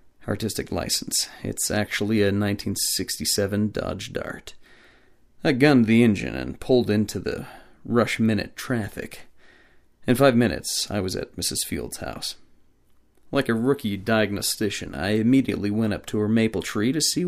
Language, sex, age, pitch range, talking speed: English, male, 30-49, 100-125 Hz, 140 wpm